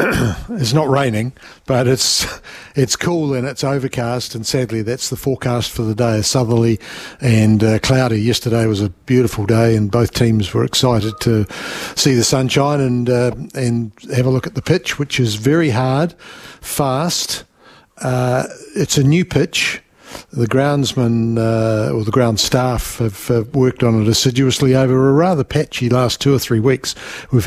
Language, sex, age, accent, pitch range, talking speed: English, male, 50-69, Australian, 120-140 Hz, 165 wpm